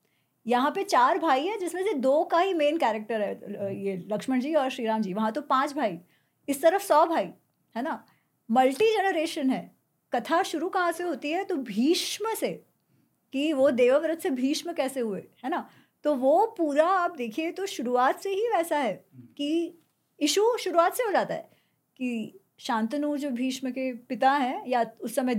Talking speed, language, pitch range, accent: 185 wpm, Hindi, 235-315 Hz, native